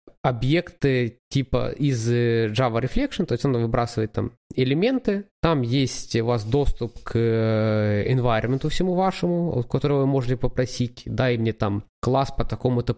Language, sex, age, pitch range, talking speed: Ukrainian, male, 20-39, 115-140 Hz, 145 wpm